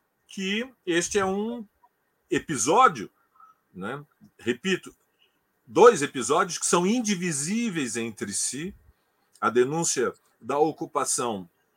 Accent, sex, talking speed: Brazilian, male, 90 wpm